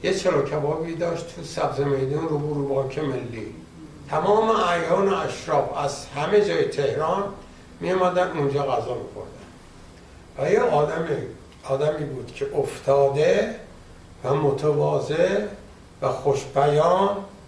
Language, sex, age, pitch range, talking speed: Persian, male, 60-79, 140-195 Hz, 110 wpm